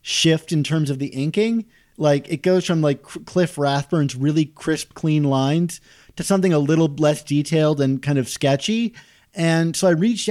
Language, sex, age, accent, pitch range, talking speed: English, male, 30-49, American, 140-180 Hz, 180 wpm